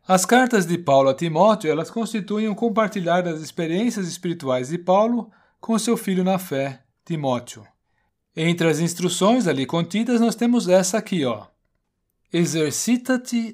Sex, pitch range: male, 145-210 Hz